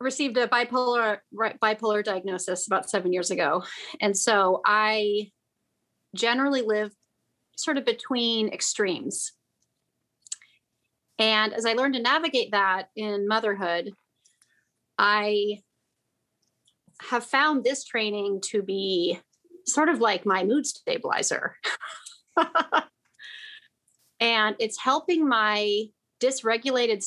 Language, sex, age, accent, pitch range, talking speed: English, female, 30-49, American, 205-255 Hz, 100 wpm